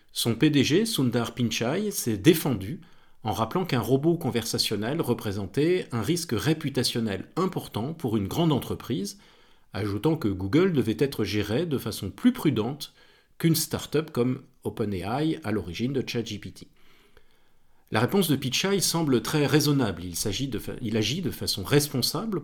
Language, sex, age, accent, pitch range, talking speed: French, male, 40-59, French, 110-155 Hz, 145 wpm